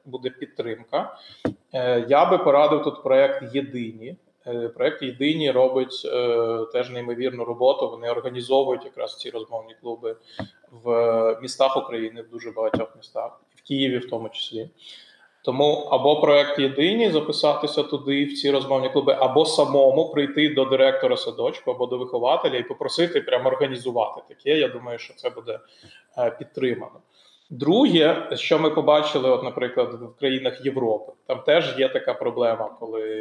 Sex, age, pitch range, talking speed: male, 20-39, 120-150 Hz, 140 wpm